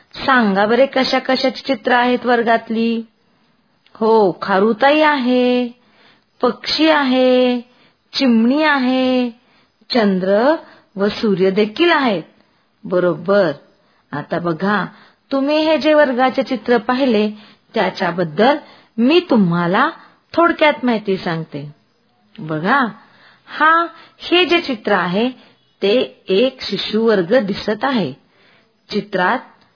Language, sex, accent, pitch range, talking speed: Marathi, female, native, 195-260 Hz, 95 wpm